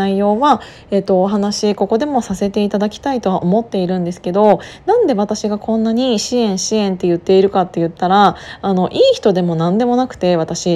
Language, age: Japanese, 20-39